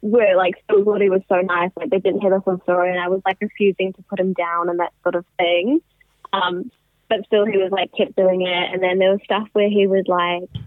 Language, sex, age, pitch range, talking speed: English, female, 20-39, 180-220 Hz, 270 wpm